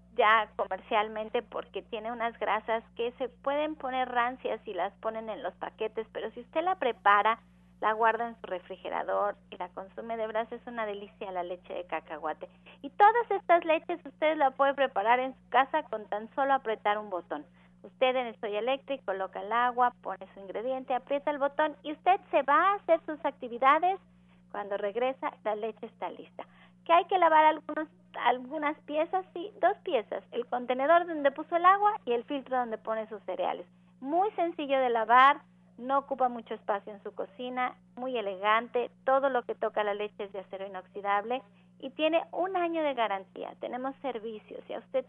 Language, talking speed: Spanish, 190 wpm